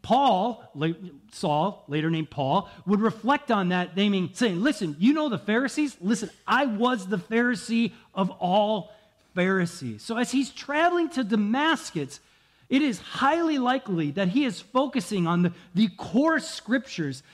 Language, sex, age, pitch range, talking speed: English, male, 40-59, 155-230 Hz, 150 wpm